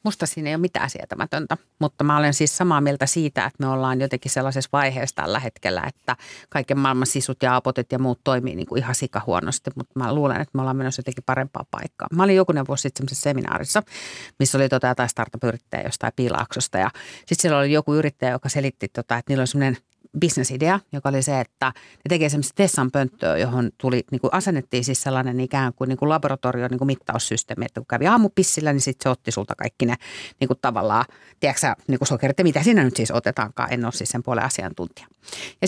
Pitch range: 130-170 Hz